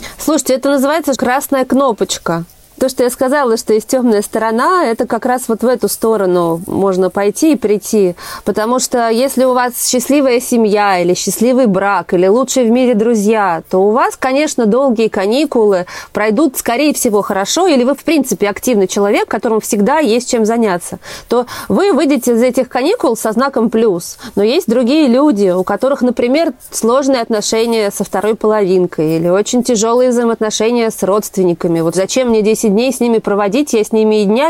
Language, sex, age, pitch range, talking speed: Russian, female, 30-49, 200-255 Hz, 175 wpm